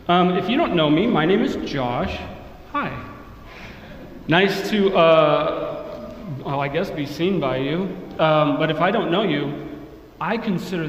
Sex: male